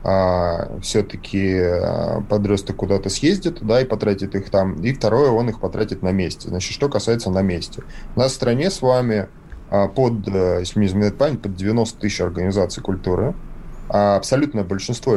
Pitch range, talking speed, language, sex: 95-115 Hz, 135 wpm, Russian, male